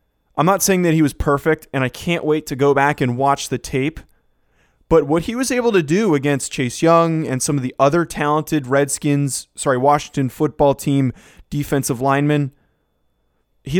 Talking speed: 185 wpm